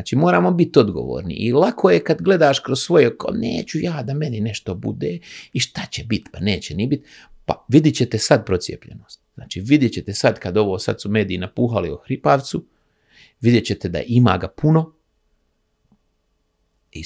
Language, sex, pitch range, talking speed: Croatian, male, 110-145 Hz, 170 wpm